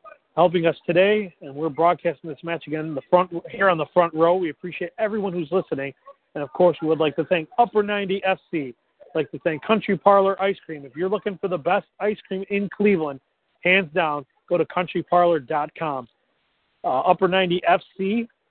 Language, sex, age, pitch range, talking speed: English, male, 40-59, 155-190 Hz, 190 wpm